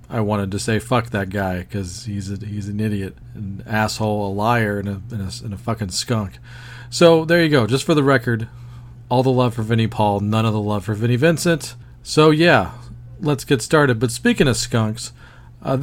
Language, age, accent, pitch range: English, 40-59, American, 115-140 Hz